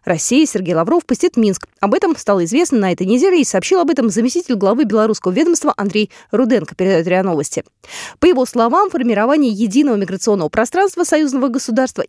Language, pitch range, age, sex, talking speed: Russian, 200-300 Hz, 20-39, female, 170 wpm